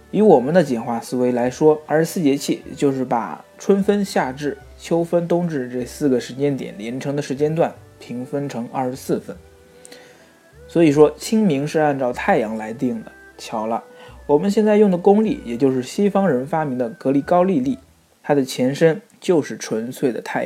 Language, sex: Chinese, male